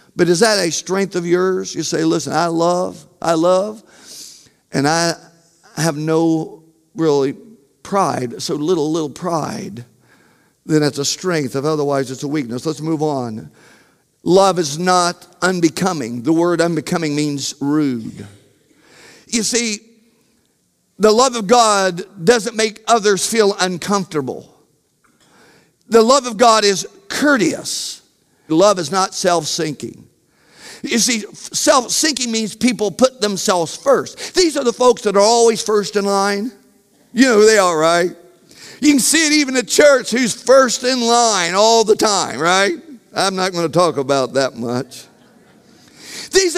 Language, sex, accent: English, male, American